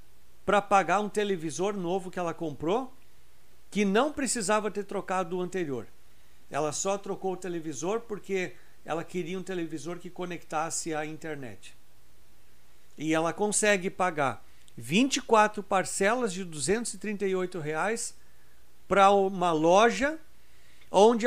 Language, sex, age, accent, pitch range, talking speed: Portuguese, male, 60-79, Brazilian, 150-225 Hz, 120 wpm